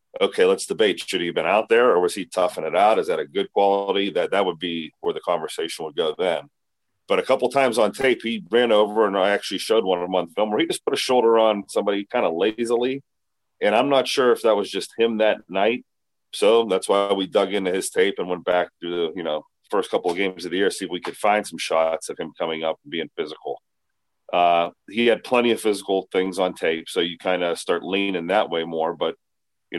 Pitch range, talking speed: 90-125 Hz, 255 wpm